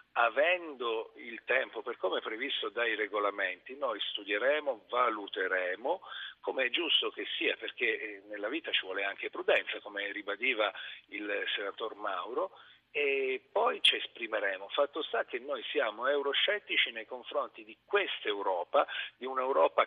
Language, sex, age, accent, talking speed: Italian, male, 40-59, native, 135 wpm